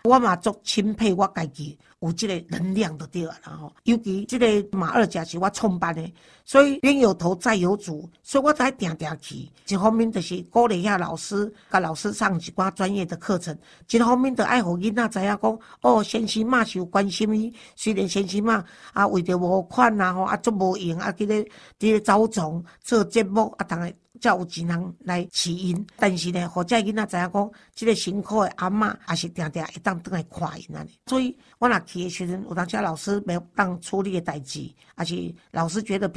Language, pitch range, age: Chinese, 175-225 Hz, 50-69